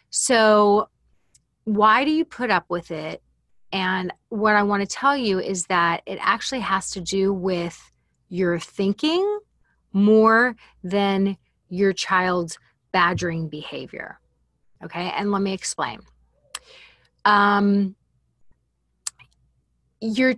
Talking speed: 110 wpm